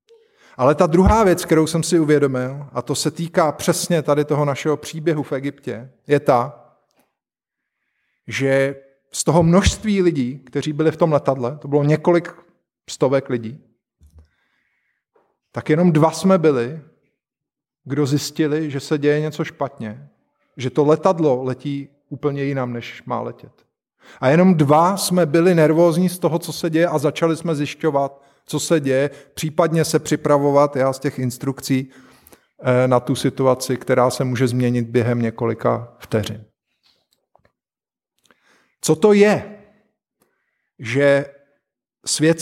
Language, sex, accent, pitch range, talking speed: Czech, male, native, 135-170 Hz, 135 wpm